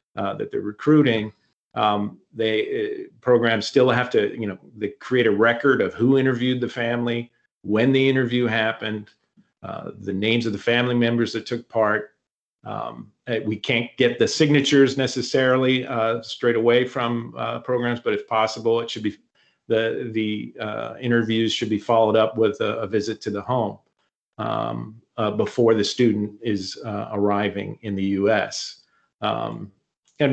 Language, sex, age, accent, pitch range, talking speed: English, male, 40-59, American, 105-120 Hz, 165 wpm